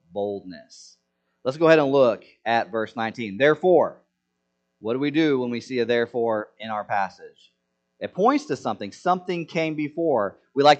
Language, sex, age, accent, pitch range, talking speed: English, male, 30-49, American, 110-160 Hz, 170 wpm